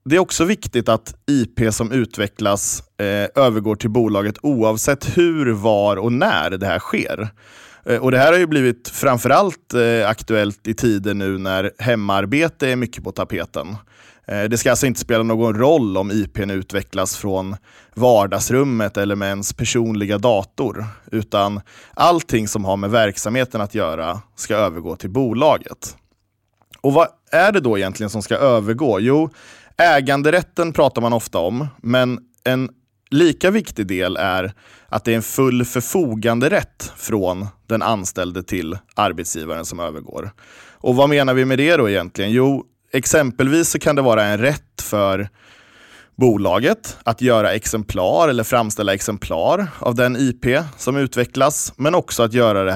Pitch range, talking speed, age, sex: 105-130 Hz, 160 wpm, 20-39, male